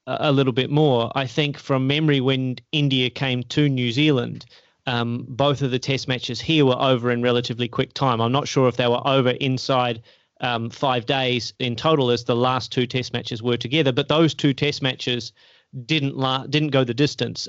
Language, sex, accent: English, male, Australian